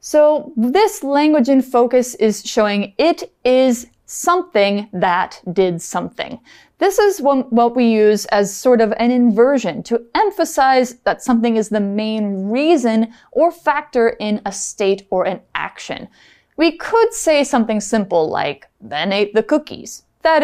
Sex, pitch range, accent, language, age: female, 210-300 Hz, American, Chinese, 20-39